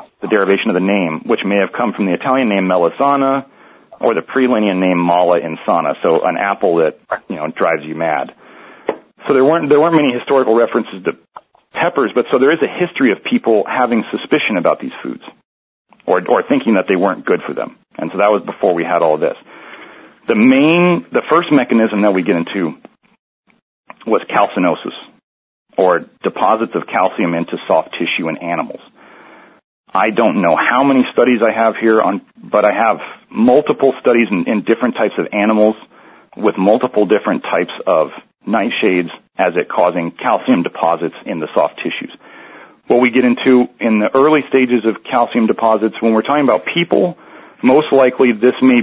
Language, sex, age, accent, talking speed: English, male, 40-59, American, 180 wpm